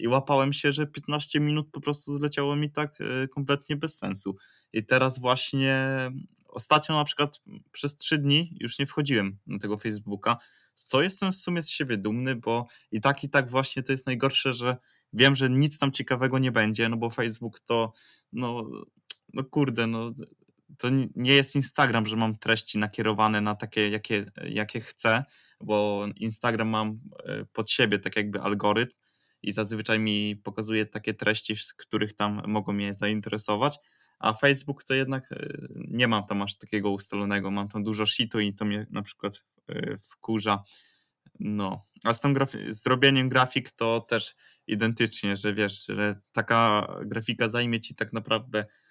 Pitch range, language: 105-135 Hz, Polish